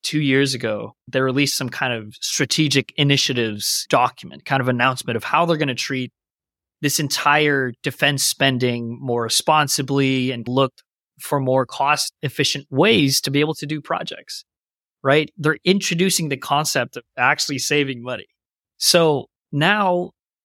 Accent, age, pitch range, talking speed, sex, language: American, 30-49, 125-150 Hz, 145 wpm, male, English